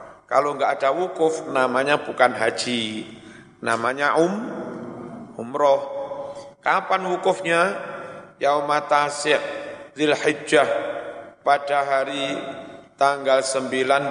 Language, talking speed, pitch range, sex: Indonesian, 75 wpm, 125-150 Hz, male